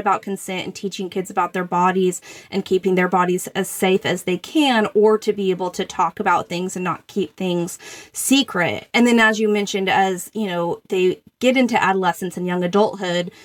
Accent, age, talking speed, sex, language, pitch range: American, 20-39, 200 wpm, female, English, 180-215 Hz